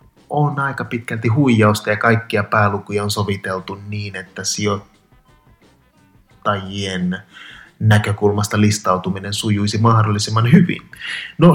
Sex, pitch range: male, 100-120 Hz